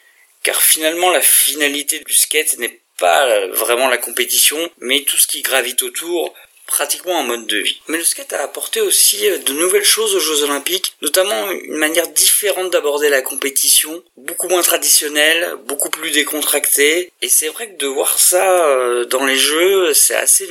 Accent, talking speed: French, 175 wpm